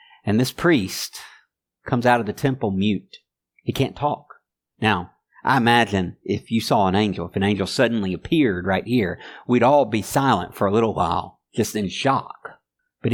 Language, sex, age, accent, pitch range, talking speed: English, male, 50-69, American, 110-185 Hz, 180 wpm